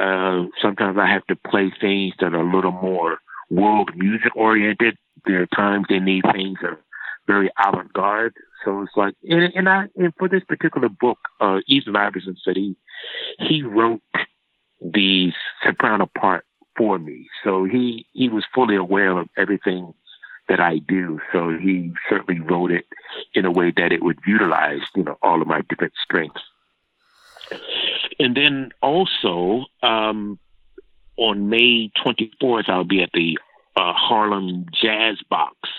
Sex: male